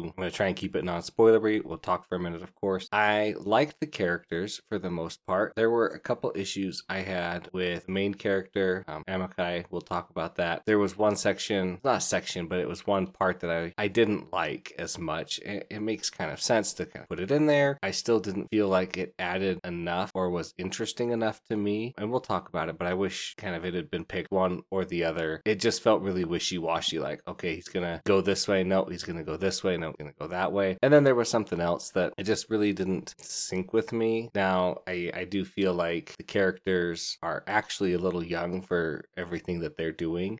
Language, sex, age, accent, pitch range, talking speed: English, male, 20-39, American, 85-105 Hz, 240 wpm